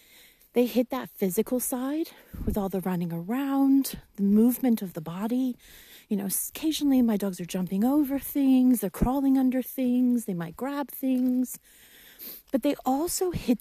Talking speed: 160 wpm